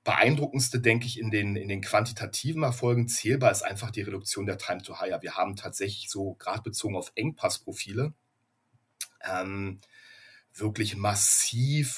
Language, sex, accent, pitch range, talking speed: German, male, German, 95-115 Hz, 135 wpm